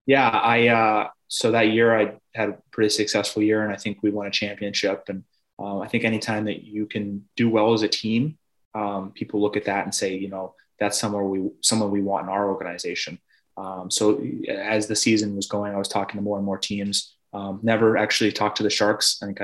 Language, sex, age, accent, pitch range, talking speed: English, male, 20-39, American, 95-105 Hz, 230 wpm